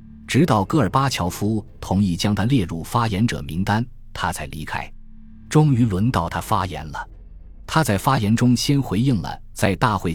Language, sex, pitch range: Chinese, male, 85-115 Hz